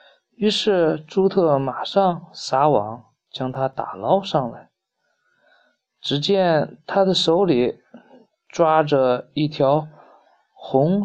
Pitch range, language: 135-190 Hz, Chinese